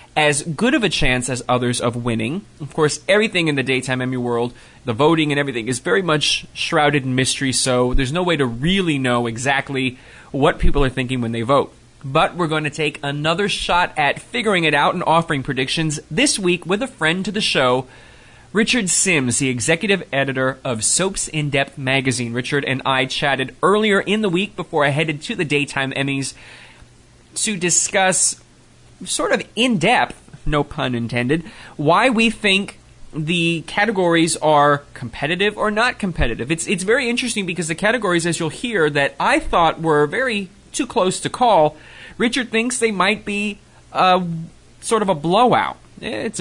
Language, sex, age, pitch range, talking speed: English, male, 20-39, 135-185 Hz, 175 wpm